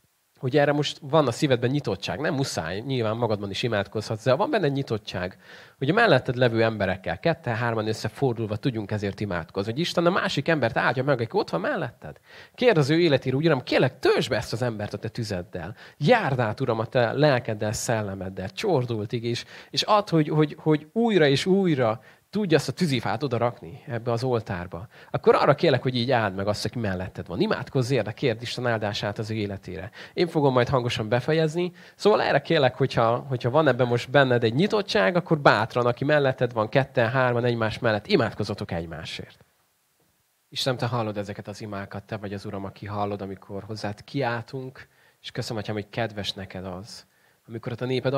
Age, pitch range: 30-49, 105-140 Hz